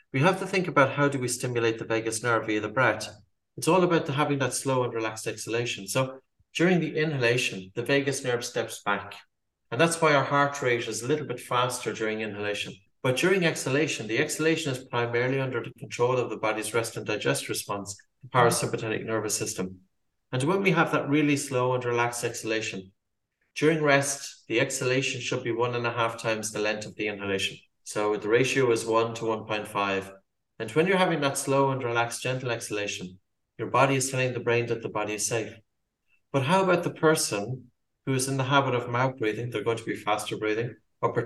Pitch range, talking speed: 110-140 Hz, 205 wpm